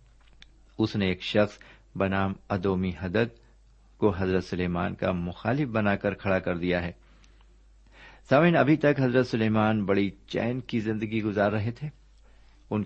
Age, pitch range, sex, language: 50-69, 95-125 Hz, male, Urdu